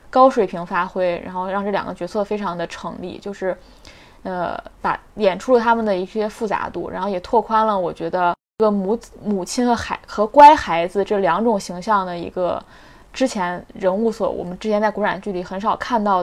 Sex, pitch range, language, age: female, 185-230 Hz, Chinese, 20-39